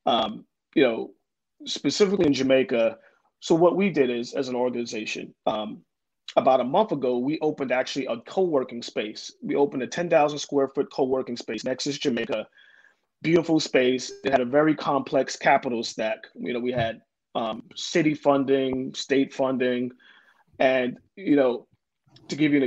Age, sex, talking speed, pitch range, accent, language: 30-49, male, 165 wpm, 125-150 Hz, American, English